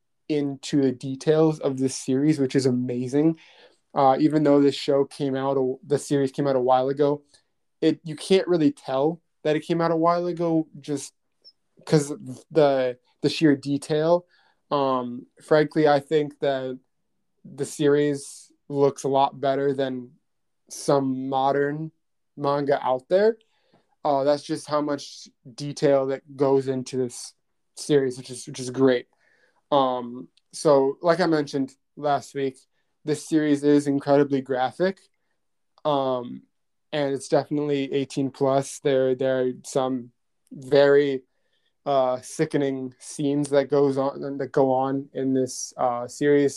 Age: 20-39